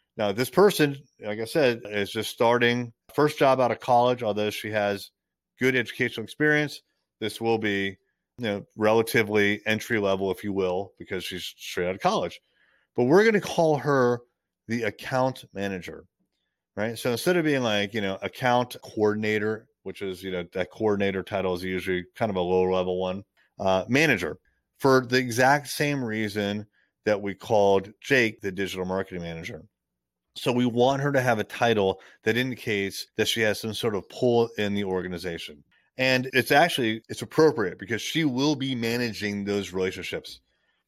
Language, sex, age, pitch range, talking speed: English, male, 30-49, 100-125 Hz, 175 wpm